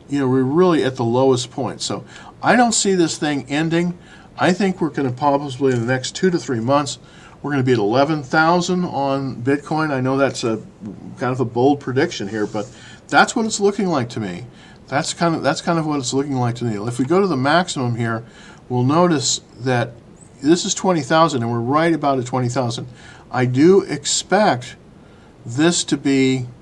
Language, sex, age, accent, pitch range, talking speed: English, male, 50-69, American, 125-160 Hz, 210 wpm